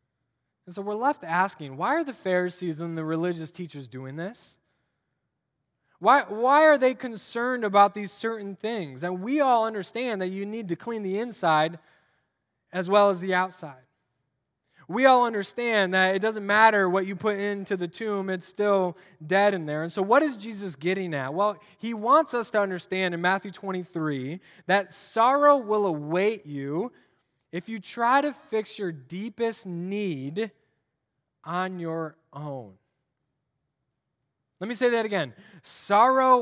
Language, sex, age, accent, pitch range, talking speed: English, male, 20-39, American, 150-210 Hz, 160 wpm